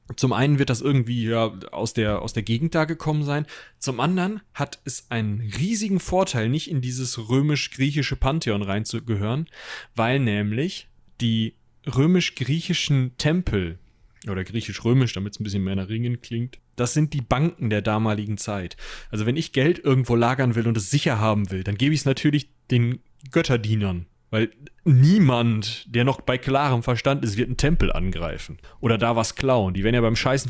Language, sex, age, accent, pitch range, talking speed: German, male, 30-49, German, 110-145 Hz, 175 wpm